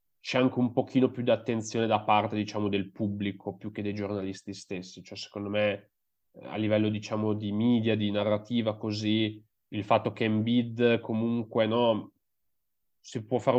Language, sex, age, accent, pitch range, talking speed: Italian, male, 30-49, native, 105-125 Hz, 165 wpm